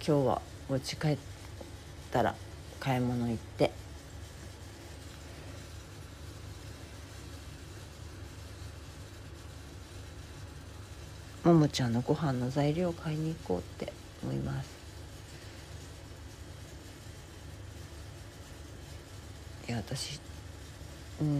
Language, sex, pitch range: Japanese, female, 90-125 Hz